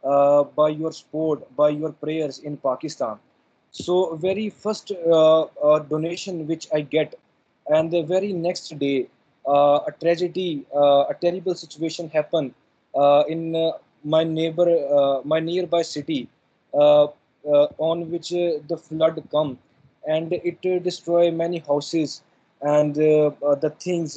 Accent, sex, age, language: Indian, male, 20-39, English